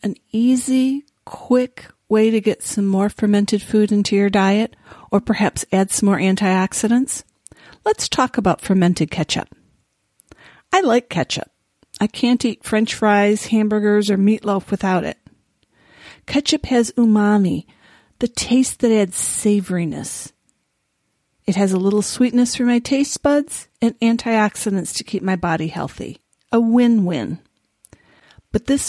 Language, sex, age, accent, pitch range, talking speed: English, female, 40-59, American, 195-235 Hz, 135 wpm